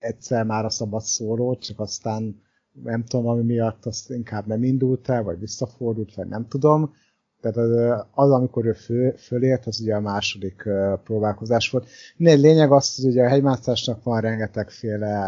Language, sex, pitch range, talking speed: Hungarian, male, 110-125 Hz, 175 wpm